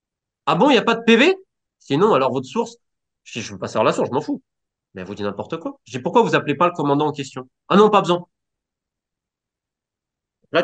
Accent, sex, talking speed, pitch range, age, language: French, male, 250 wpm, 110-165 Hz, 20-39, French